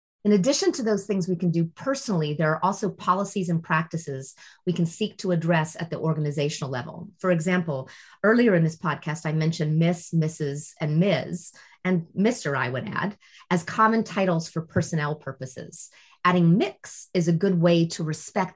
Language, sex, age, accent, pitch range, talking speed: English, female, 30-49, American, 160-190 Hz, 180 wpm